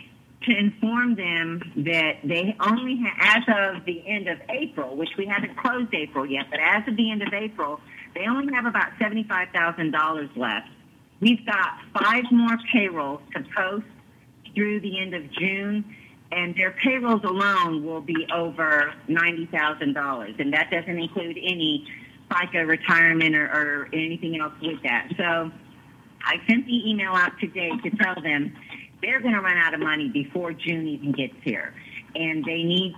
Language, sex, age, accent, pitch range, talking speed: English, female, 50-69, American, 160-205 Hz, 160 wpm